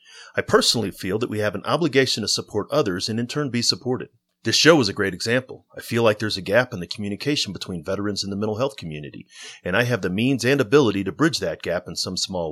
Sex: male